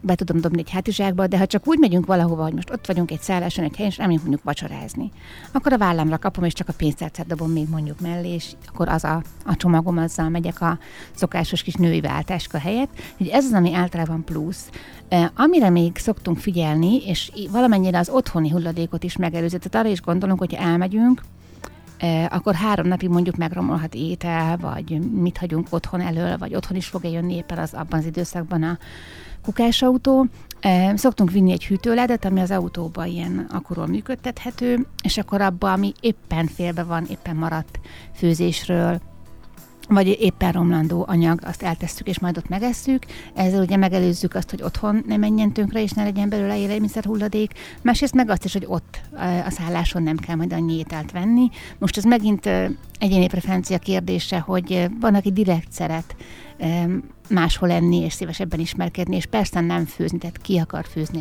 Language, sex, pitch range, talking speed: Hungarian, female, 170-200 Hz, 175 wpm